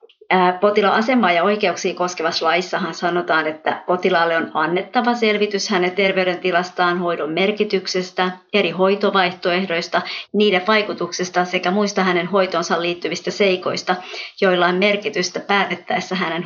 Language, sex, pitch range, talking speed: Finnish, male, 180-210 Hz, 110 wpm